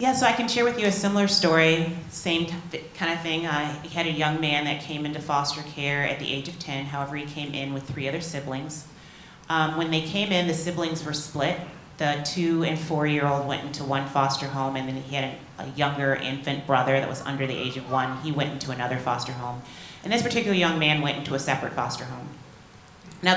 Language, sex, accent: English, female, American